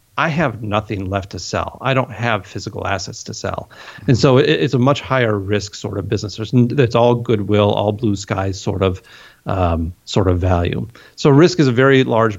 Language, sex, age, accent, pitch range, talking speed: English, male, 40-59, American, 105-120 Hz, 200 wpm